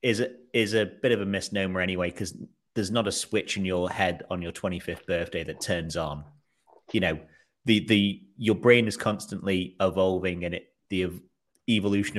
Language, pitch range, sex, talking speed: English, 90-110 Hz, male, 175 wpm